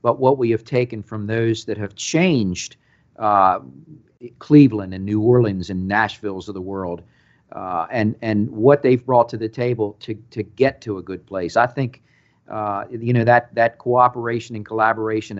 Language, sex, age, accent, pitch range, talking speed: English, male, 50-69, American, 105-130 Hz, 180 wpm